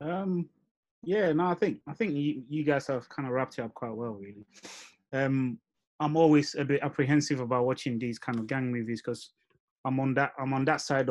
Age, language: 20-39, English